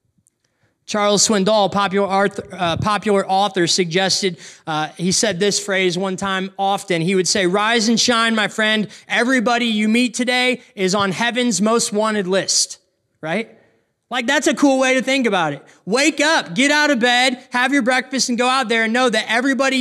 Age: 20-39